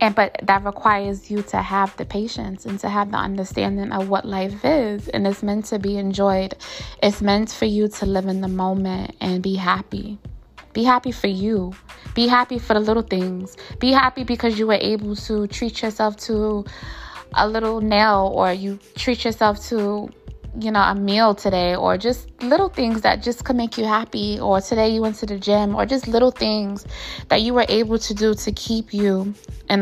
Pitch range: 195-225 Hz